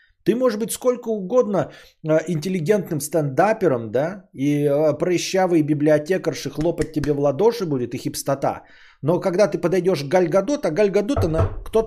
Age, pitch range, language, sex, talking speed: 20-39, 125-210 Hz, Bulgarian, male, 135 wpm